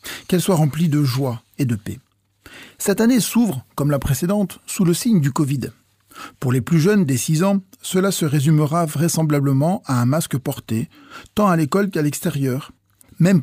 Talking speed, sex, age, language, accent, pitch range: 180 wpm, male, 40-59, French, French, 125-185 Hz